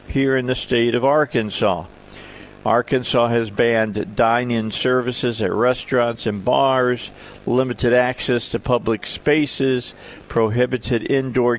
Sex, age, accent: male, 50-69, American